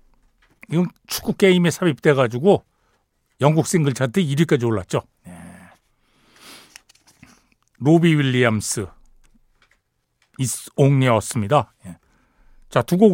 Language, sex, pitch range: Korean, male, 120-170 Hz